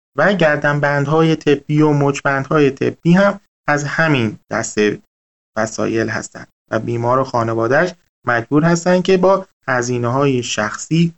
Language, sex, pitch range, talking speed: Persian, male, 125-160 Hz, 130 wpm